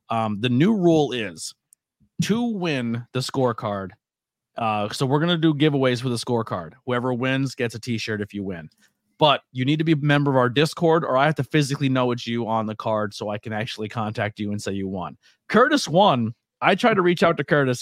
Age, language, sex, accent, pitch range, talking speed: 30-49, English, male, American, 110-135 Hz, 220 wpm